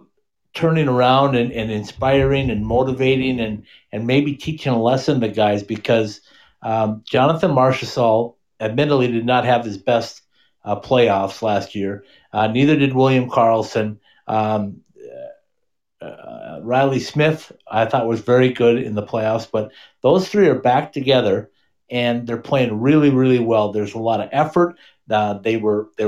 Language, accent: English, American